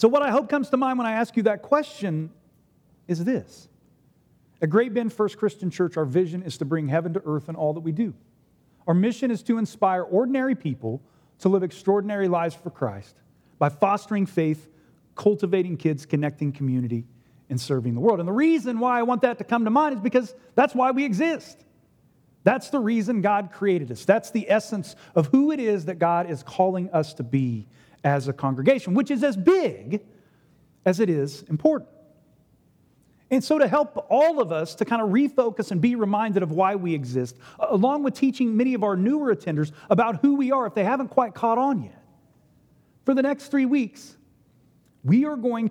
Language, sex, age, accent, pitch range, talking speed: English, male, 40-59, American, 150-235 Hz, 200 wpm